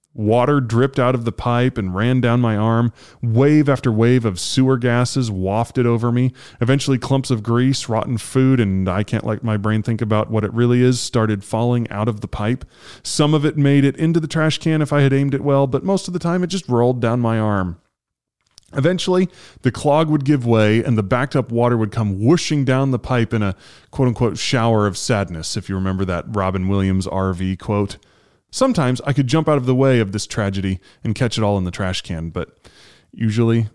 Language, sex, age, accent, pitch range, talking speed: English, male, 30-49, American, 105-135 Hz, 215 wpm